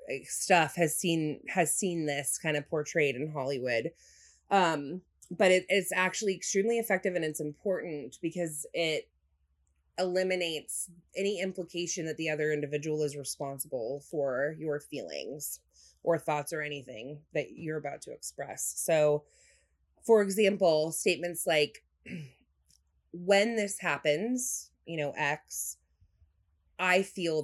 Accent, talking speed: American, 120 wpm